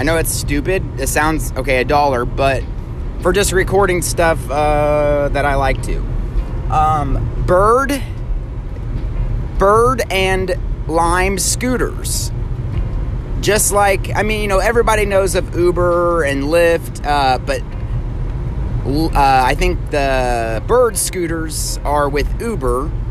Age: 30-49